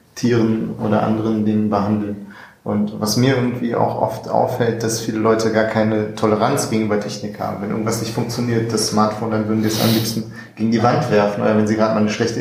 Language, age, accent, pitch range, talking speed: German, 30-49, German, 105-115 Hz, 210 wpm